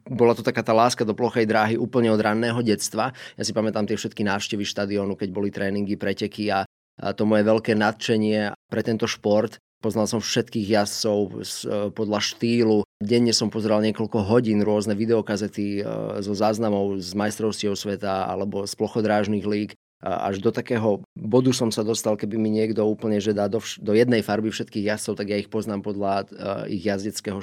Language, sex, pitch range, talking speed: Slovak, male, 100-115 Hz, 175 wpm